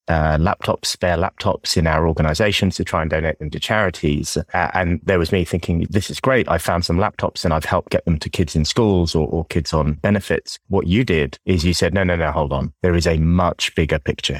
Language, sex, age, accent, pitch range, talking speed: English, male, 30-49, British, 80-95 Hz, 240 wpm